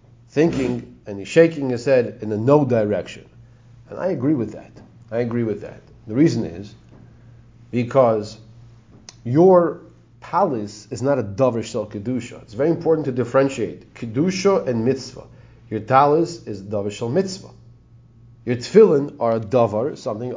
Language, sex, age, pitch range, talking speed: English, male, 40-59, 115-140 Hz, 145 wpm